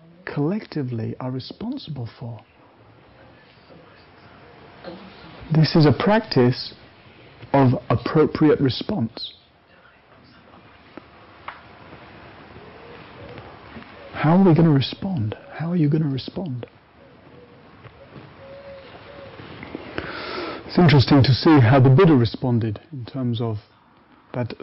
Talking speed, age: 85 wpm, 60-79